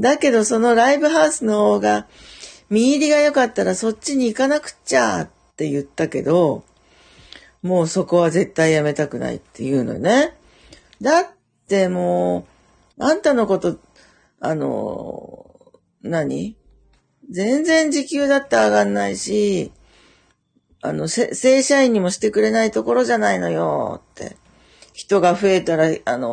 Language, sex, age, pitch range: Japanese, female, 40-59, 155-225 Hz